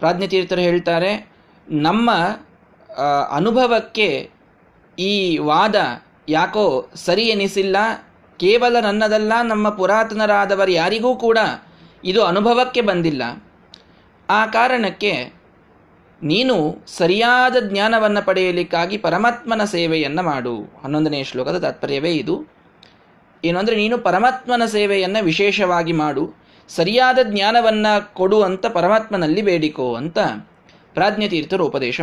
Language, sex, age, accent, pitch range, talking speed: Kannada, male, 20-39, native, 170-220 Hz, 85 wpm